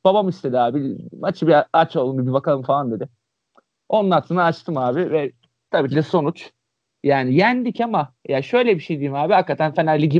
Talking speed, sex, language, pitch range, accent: 190 wpm, male, Turkish, 135-185 Hz, native